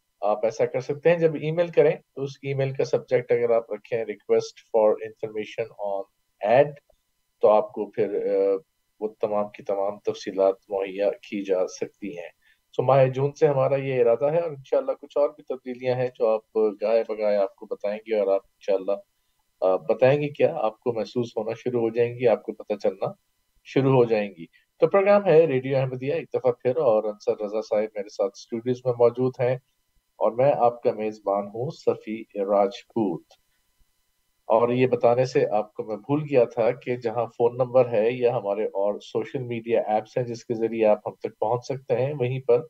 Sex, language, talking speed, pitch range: male, Urdu, 175 wpm, 110-150 Hz